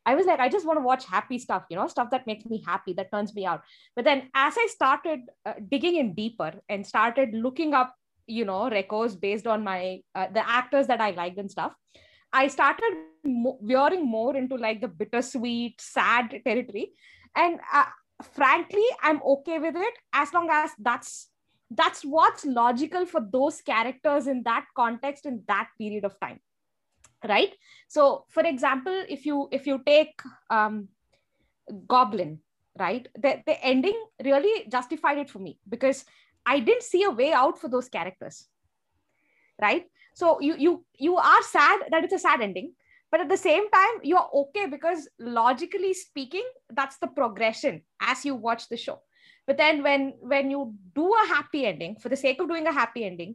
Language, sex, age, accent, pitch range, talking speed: English, female, 20-39, Indian, 230-325 Hz, 180 wpm